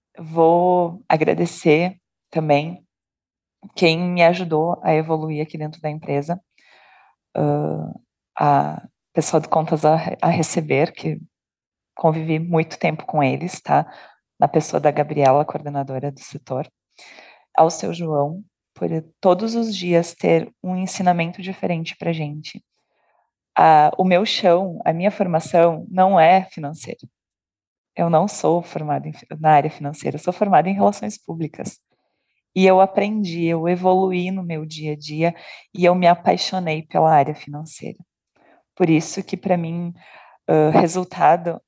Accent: Brazilian